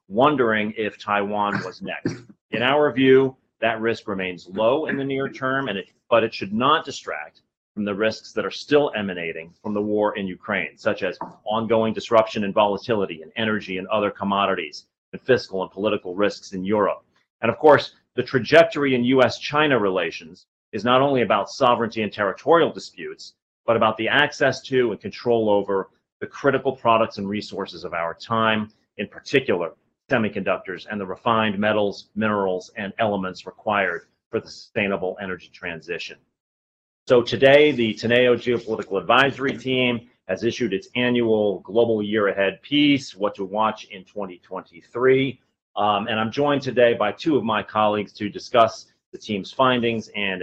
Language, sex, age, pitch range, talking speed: English, male, 30-49, 100-120 Hz, 165 wpm